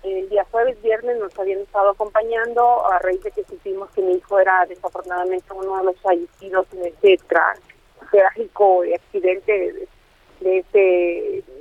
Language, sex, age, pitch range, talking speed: Spanish, female, 30-49, 190-225 Hz, 145 wpm